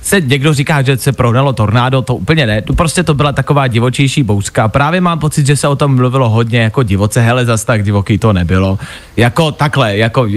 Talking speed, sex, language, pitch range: 210 wpm, male, Czech, 120-150 Hz